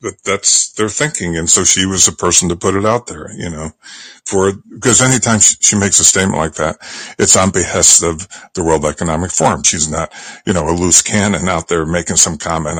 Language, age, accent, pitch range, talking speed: English, 50-69, American, 80-100 Hz, 220 wpm